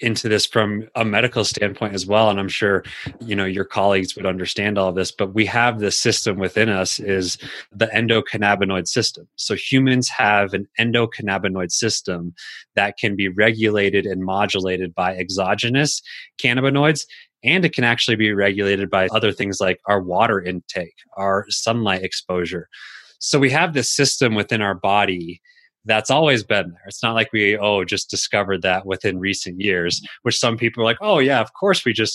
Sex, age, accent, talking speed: male, 30-49, American, 180 wpm